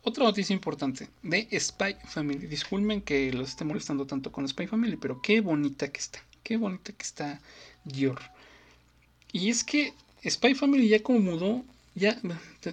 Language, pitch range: Korean, 140-185 Hz